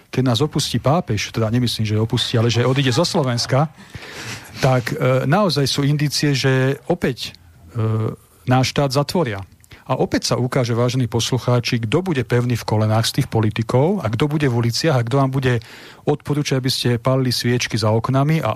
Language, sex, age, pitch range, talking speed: English, male, 40-59, 110-145 Hz, 180 wpm